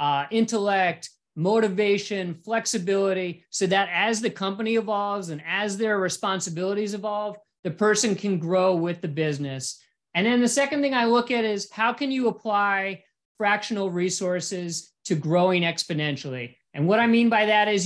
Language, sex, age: English, male, 40-59